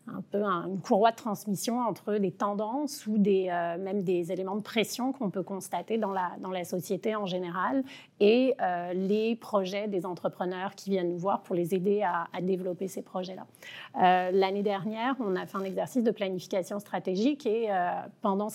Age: 30-49